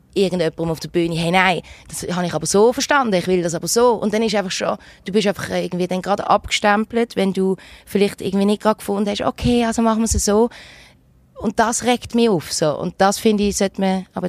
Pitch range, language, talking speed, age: 175-210 Hz, German, 235 wpm, 20-39